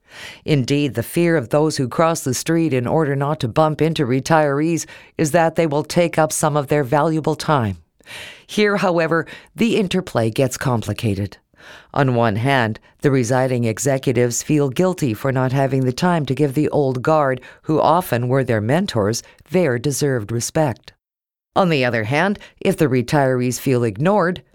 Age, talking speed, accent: 50-69, 165 wpm, American